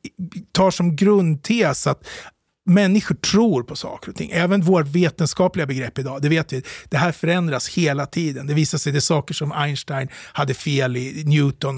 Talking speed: 180 wpm